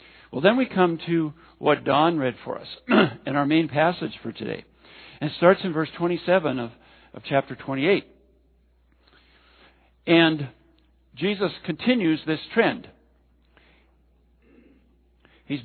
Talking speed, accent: 120 wpm, American